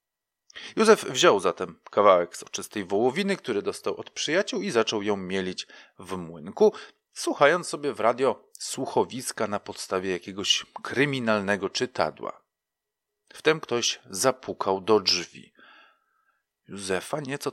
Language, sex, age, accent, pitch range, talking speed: Polish, male, 40-59, native, 95-135 Hz, 115 wpm